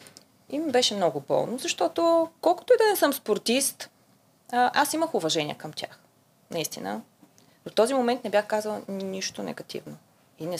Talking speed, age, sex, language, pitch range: 160 wpm, 20-39, female, Bulgarian, 200-255 Hz